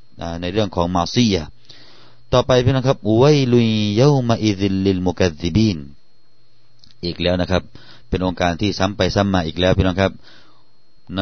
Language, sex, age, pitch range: Thai, male, 30-49, 95-120 Hz